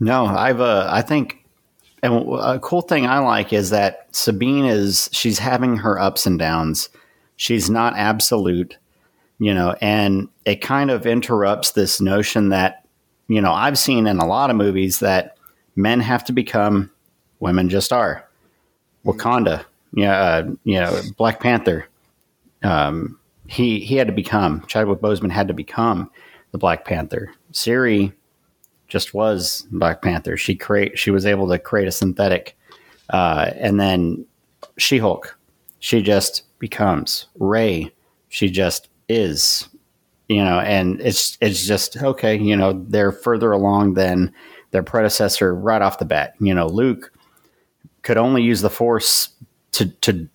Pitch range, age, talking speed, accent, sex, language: 95-115 Hz, 40-59, 155 wpm, American, male, English